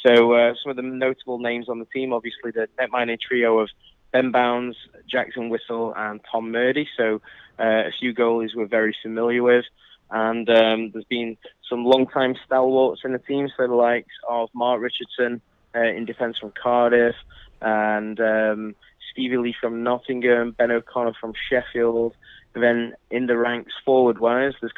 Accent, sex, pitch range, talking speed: British, male, 115-125 Hz, 165 wpm